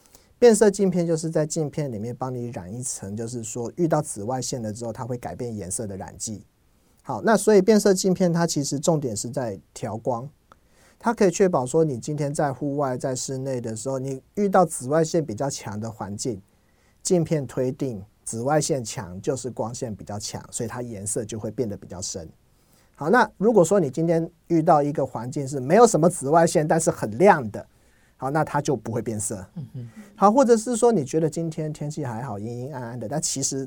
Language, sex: Chinese, male